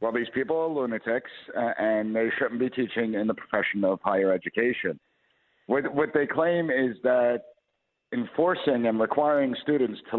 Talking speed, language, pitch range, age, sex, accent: 165 wpm, English, 110-145 Hz, 60-79, male, American